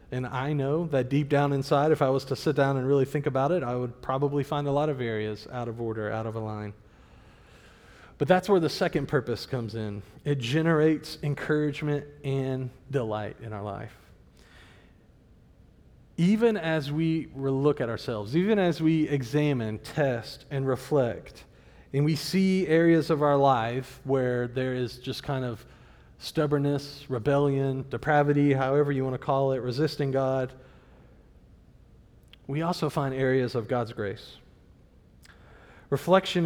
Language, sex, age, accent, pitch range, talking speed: English, male, 40-59, American, 125-150 Hz, 155 wpm